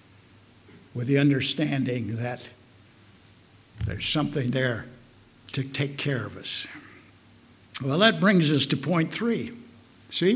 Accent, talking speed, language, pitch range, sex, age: American, 115 wpm, English, 120-195 Hz, male, 60-79